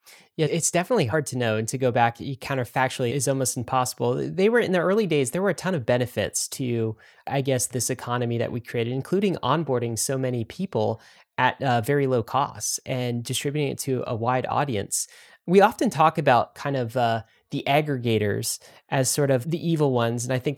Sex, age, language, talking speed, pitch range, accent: male, 20-39, English, 200 wpm, 120-155 Hz, American